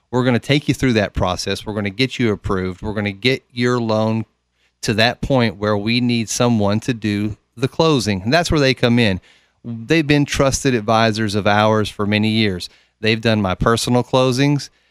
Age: 30-49